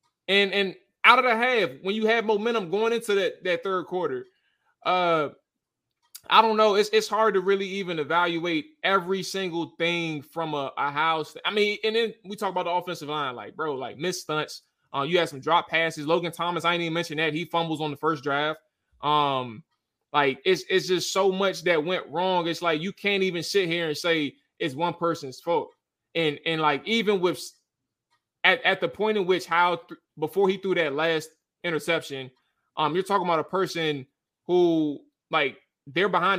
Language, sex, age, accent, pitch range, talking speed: English, male, 20-39, American, 160-215 Hz, 200 wpm